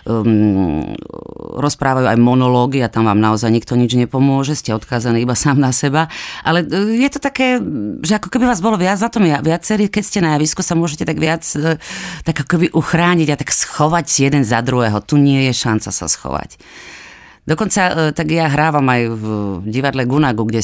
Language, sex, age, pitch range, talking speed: Slovak, female, 30-49, 110-150 Hz, 180 wpm